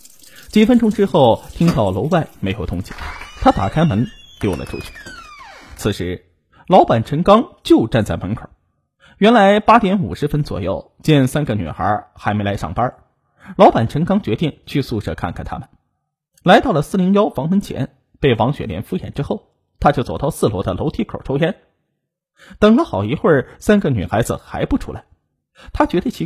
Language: Chinese